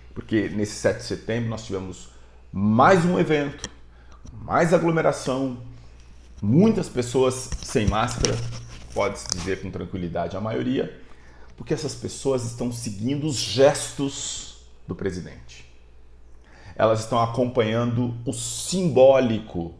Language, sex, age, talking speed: English, male, 40-59, 110 wpm